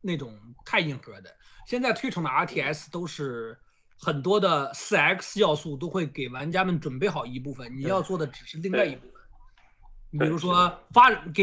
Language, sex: Chinese, male